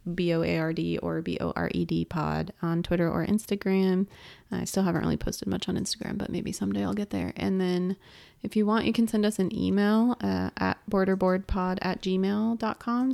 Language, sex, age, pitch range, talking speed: English, female, 30-49, 165-210 Hz, 210 wpm